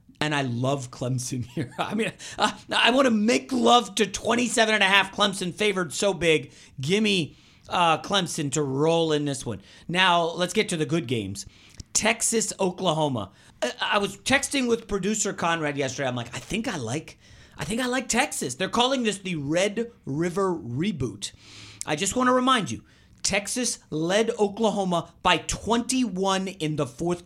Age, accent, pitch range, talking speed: 40-59, American, 155-245 Hz, 175 wpm